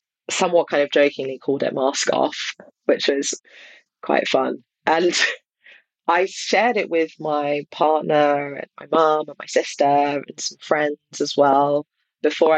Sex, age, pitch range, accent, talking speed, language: female, 30-49, 145-175 Hz, British, 150 wpm, English